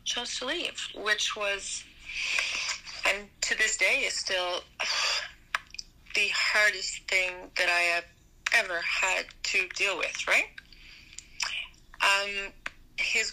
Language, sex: English, female